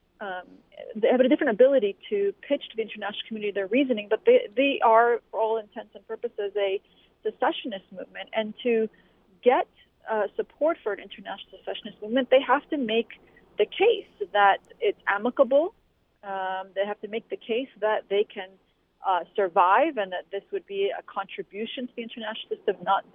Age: 40-59